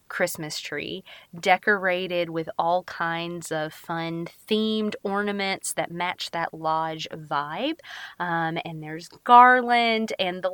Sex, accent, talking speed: female, American, 120 wpm